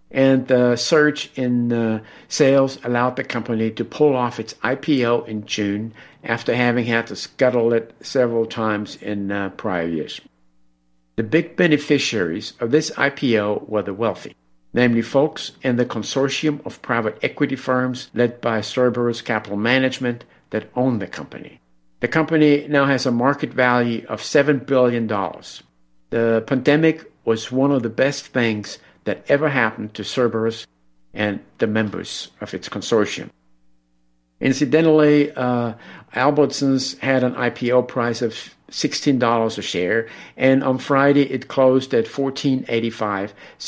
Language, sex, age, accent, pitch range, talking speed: English, male, 50-69, American, 110-135 Hz, 135 wpm